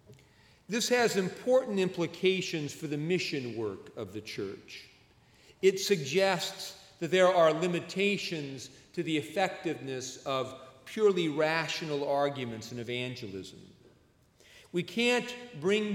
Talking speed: 110 wpm